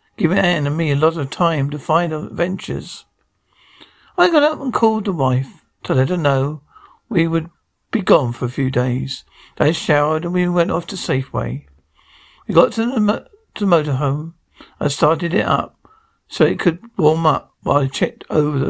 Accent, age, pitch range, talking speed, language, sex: British, 60-79, 145-210 Hz, 195 wpm, English, male